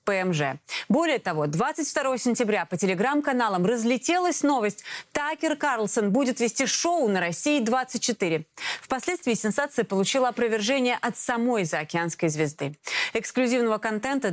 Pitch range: 185-270 Hz